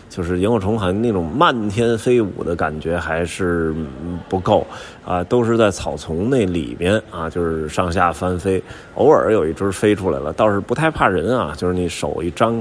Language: Chinese